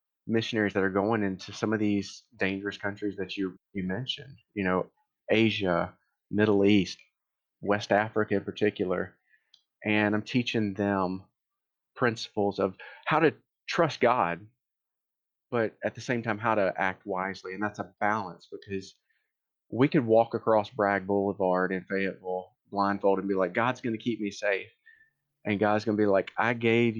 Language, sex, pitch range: English, male, 100-115 Hz